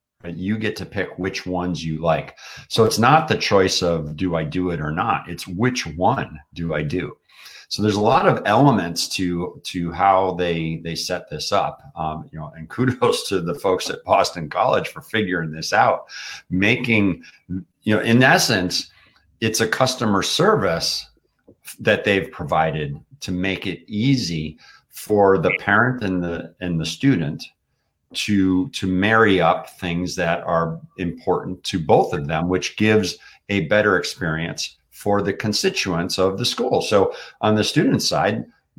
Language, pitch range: English, 85-110 Hz